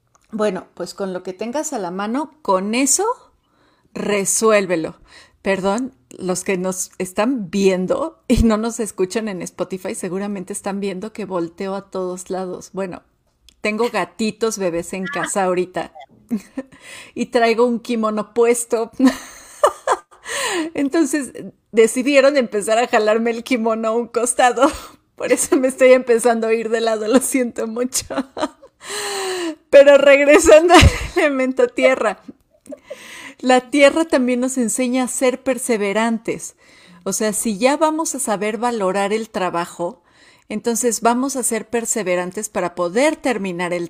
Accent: Mexican